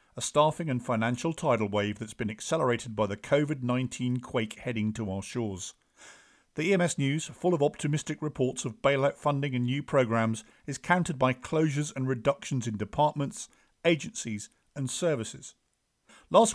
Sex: male